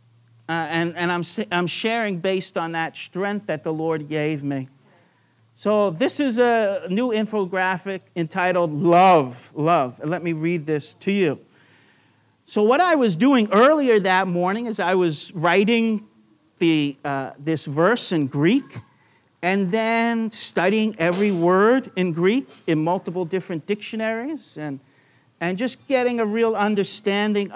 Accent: American